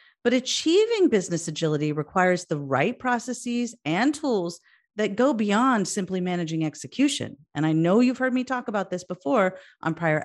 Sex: female